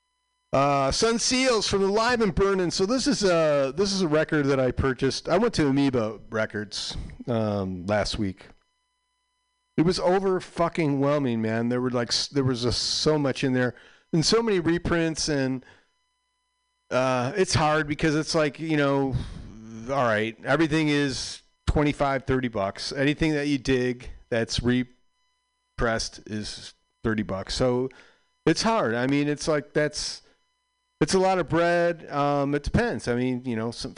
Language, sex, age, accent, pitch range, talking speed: English, male, 40-59, American, 125-180 Hz, 160 wpm